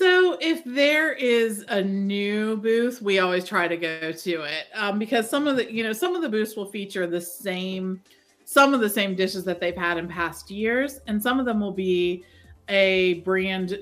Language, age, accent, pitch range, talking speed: English, 40-59, American, 180-240 Hz, 210 wpm